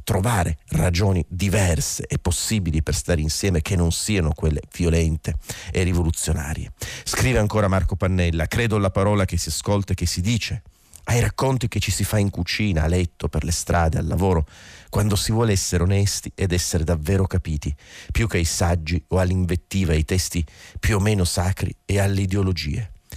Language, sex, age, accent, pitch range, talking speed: Italian, male, 40-59, native, 85-100 Hz, 175 wpm